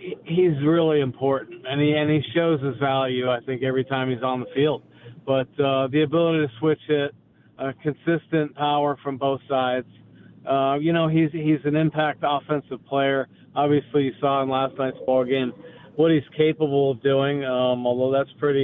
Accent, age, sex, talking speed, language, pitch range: American, 40-59, male, 185 wpm, English, 130-150 Hz